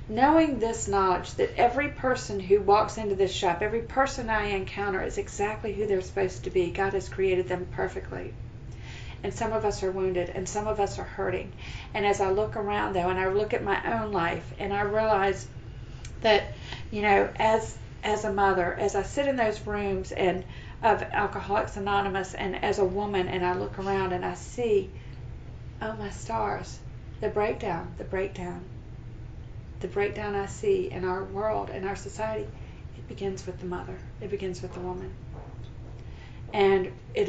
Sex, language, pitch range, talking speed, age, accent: female, English, 175-205 Hz, 180 wpm, 40-59, American